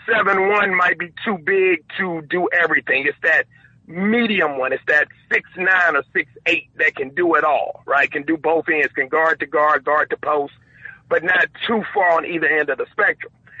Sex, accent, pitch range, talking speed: male, American, 150-230 Hz, 205 wpm